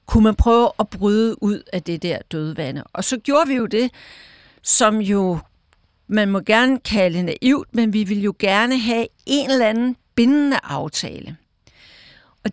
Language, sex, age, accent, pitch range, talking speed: Danish, female, 60-79, native, 195-235 Hz, 170 wpm